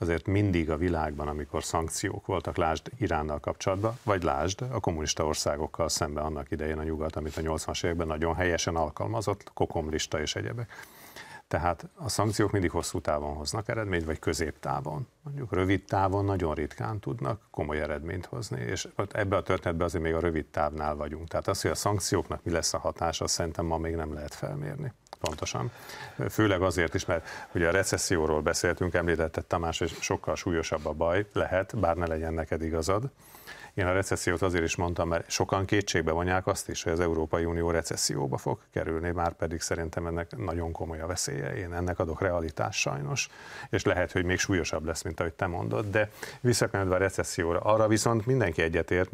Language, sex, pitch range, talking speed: Hungarian, male, 80-100 Hz, 180 wpm